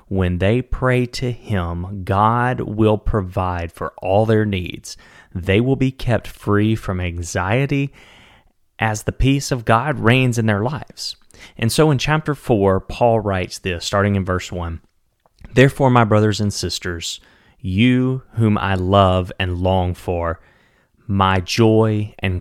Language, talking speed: English, 145 wpm